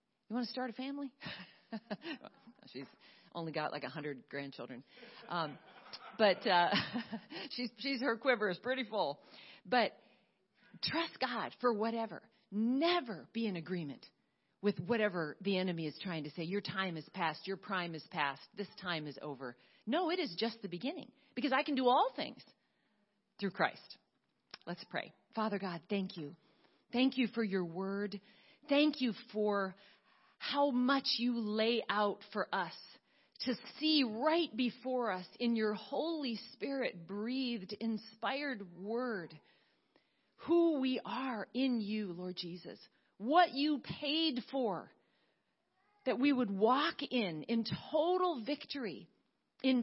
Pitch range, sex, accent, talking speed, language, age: 195-270 Hz, female, American, 145 wpm, English, 40-59